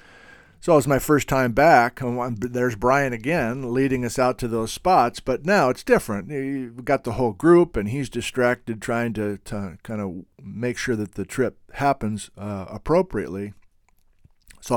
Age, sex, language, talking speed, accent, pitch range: 50-69, male, English, 175 wpm, American, 110-135 Hz